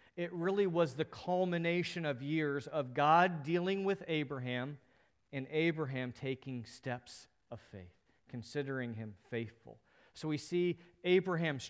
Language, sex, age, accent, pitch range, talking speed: English, male, 40-59, American, 120-155 Hz, 130 wpm